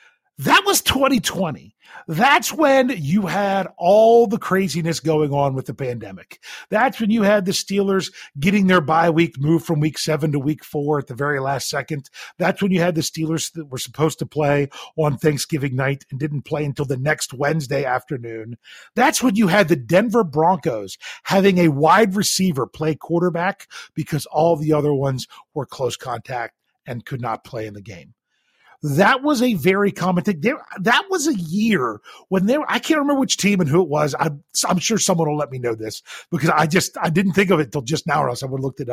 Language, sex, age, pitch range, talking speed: English, male, 40-59, 140-200 Hz, 210 wpm